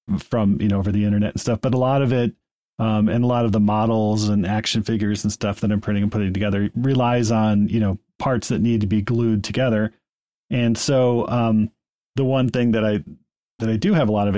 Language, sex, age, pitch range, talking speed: English, male, 30-49, 105-120 Hz, 240 wpm